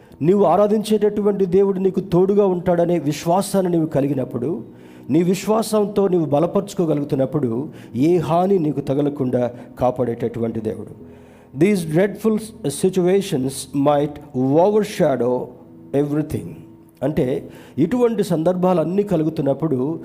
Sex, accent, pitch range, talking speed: male, native, 125-180 Hz, 85 wpm